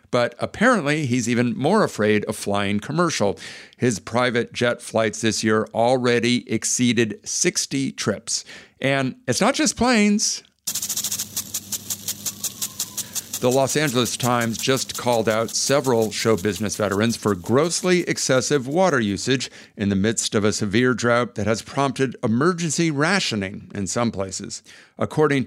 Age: 50-69